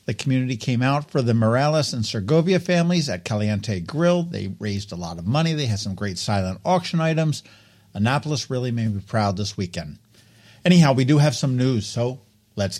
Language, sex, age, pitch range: English, male, 50-69, 105-155 Hz